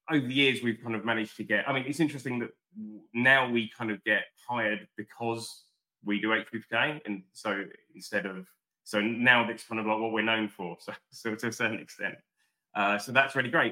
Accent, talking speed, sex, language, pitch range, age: British, 215 wpm, male, English, 95-120 Hz, 20-39